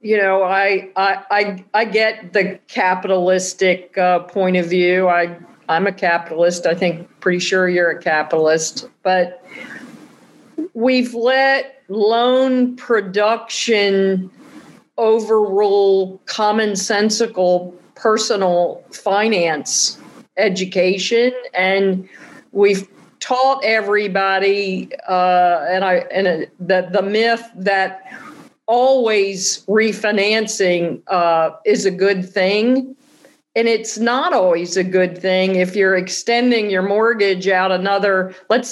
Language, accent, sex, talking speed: English, American, female, 105 wpm